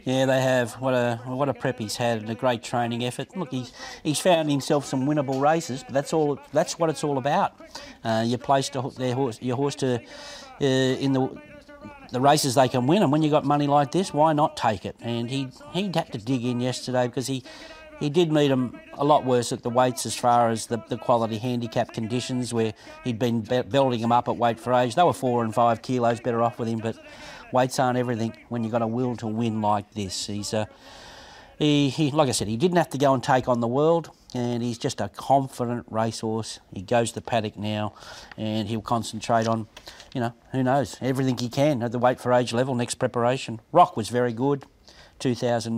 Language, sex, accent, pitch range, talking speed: English, male, Australian, 115-140 Hz, 230 wpm